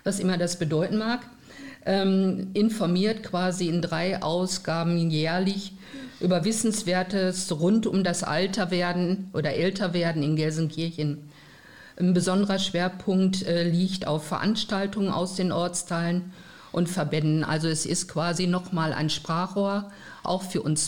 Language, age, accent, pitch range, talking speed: German, 50-69, German, 160-195 Hz, 125 wpm